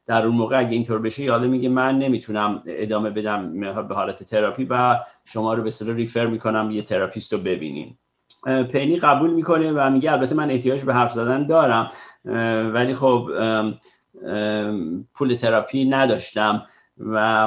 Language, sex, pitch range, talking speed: Persian, male, 110-130 Hz, 150 wpm